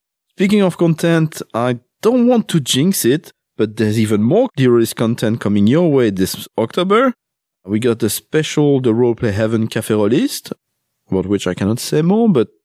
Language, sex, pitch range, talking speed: English, male, 105-155 Hz, 170 wpm